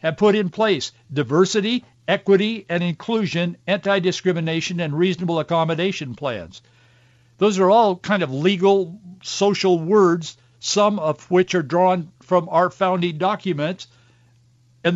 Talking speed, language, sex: 125 wpm, English, male